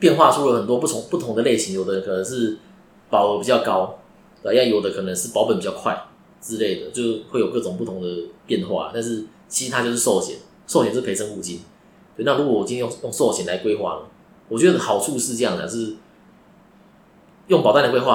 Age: 20-39